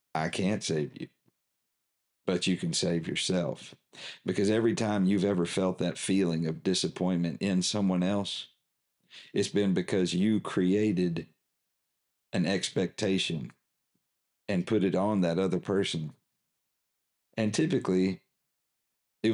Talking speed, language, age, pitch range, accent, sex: 120 wpm, English, 50-69, 85-100 Hz, American, male